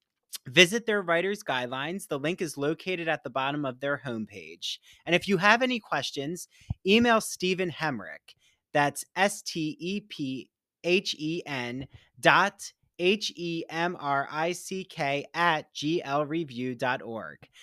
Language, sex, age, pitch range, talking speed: English, male, 30-49, 140-190 Hz, 120 wpm